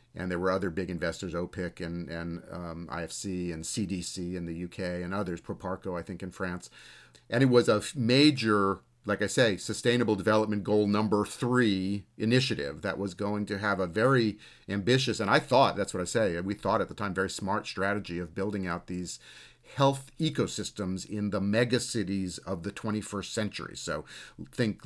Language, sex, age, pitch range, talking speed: English, male, 40-59, 95-110 Hz, 180 wpm